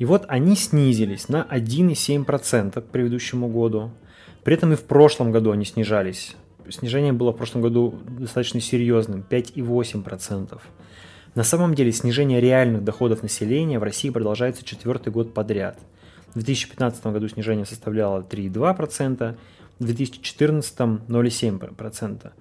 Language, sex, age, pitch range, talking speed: Russian, male, 20-39, 110-135 Hz, 125 wpm